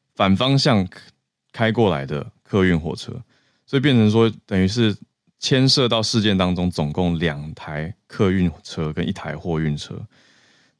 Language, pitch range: Chinese, 80-105 Hz